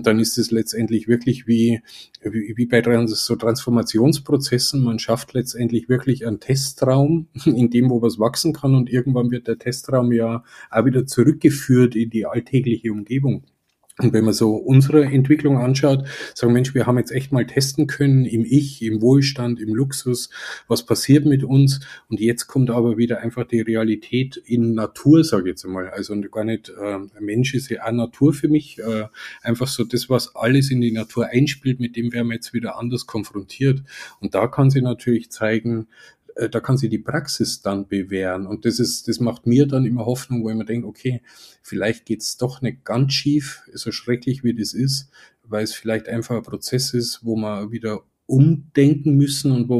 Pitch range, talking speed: 115-130 Hz, 190 wpm